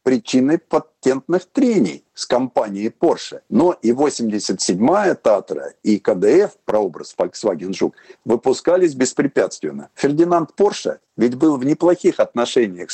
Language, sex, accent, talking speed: Russian, male, native, 110 wpm